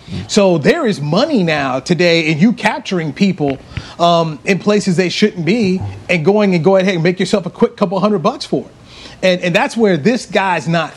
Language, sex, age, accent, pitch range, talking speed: English, male, 40-59, American, 165-205 Hz, 210 wpm